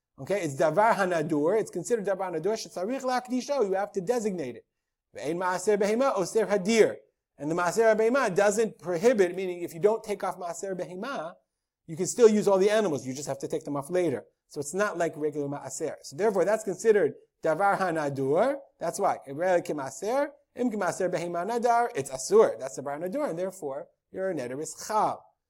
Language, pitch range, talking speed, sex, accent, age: English, 160-215 Hz, 175 wpm, male, American, 30-49